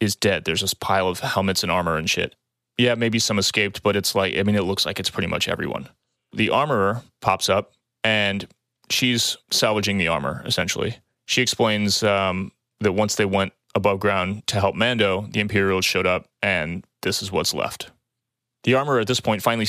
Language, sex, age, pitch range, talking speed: English, male, 30-49, 95-115 Hz, 195 wpm